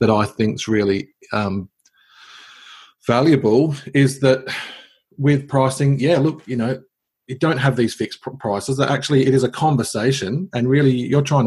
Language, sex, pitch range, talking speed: English, male, 100-135 Hz, 155 wpm